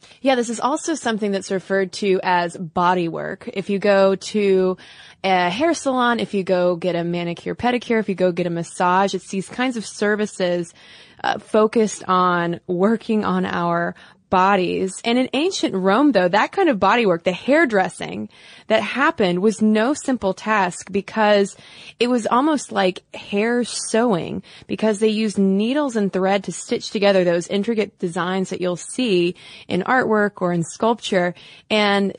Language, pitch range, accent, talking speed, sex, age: English, 185-235 Hz, American, 165 wpm, female, 20-39